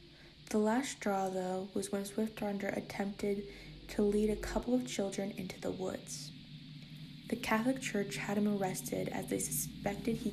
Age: 10-29